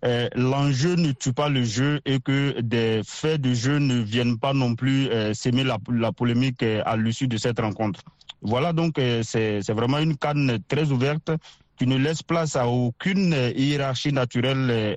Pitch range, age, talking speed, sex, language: 120-140 Hz, 40-59, 170 wpm, male, French